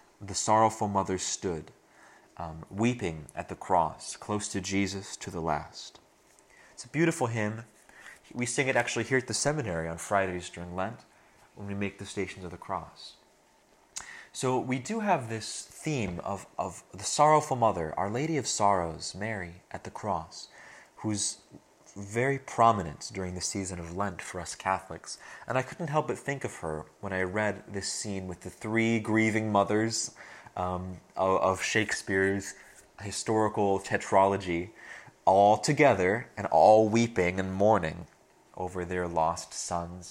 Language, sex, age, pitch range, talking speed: English, male, 30-49, 90-115 Hz, 155 wpm